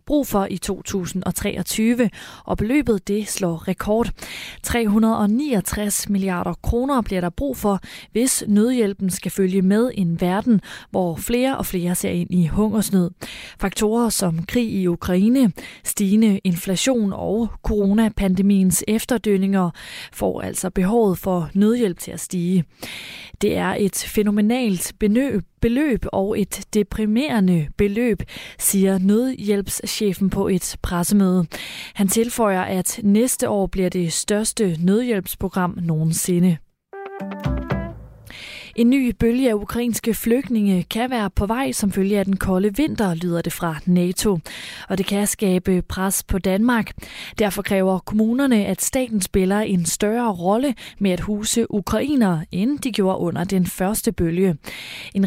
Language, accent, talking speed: Danish, native, 135 wpm